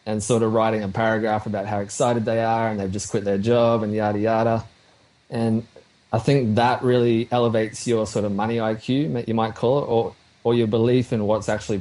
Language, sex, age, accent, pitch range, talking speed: English, male, 20-39, Australian, 105-120 Hz, 215 wpm